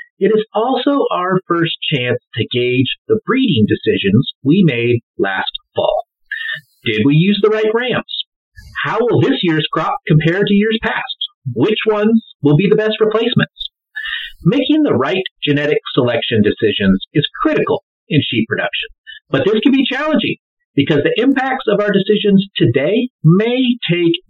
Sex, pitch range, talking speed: male, 145-230 Hz, 155 wpm